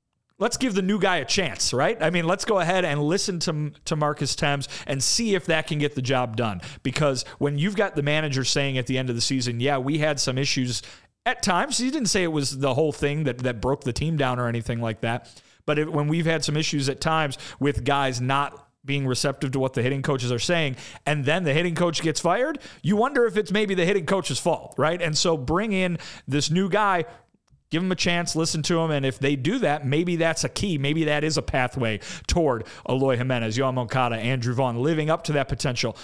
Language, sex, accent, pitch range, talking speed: English, male, American, 135-165 Hz, 240 wpm